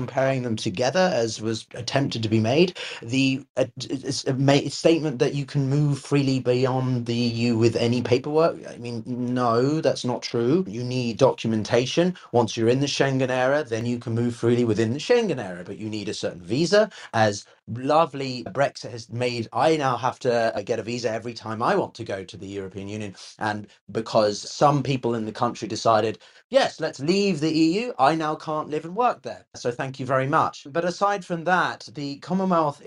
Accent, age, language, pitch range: British, 30-49, English, 115-160 Hz